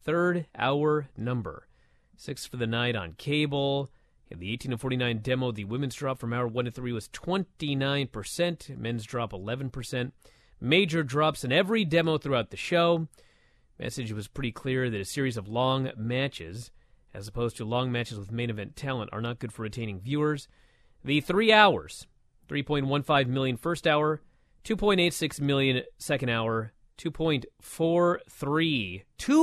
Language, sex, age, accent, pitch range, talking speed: English, male, 30-49, American, 115-150 Hz, 150 wpm